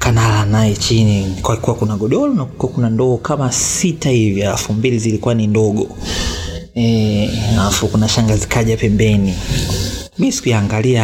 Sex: male